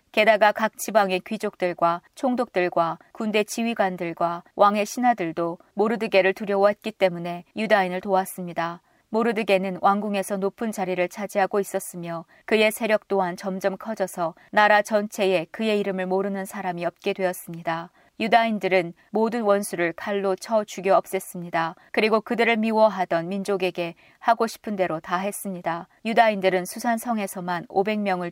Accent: native